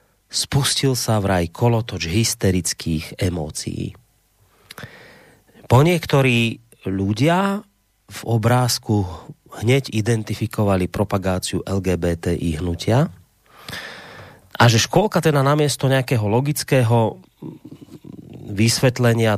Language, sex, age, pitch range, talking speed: Slovak, male, 30-49, 105-145 Hz, 75 wpm